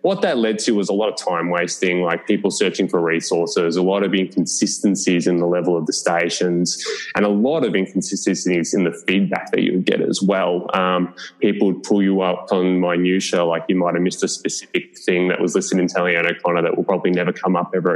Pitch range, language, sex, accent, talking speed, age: 90-100 Hz, English, male, Australian, 225 wpm, 20-39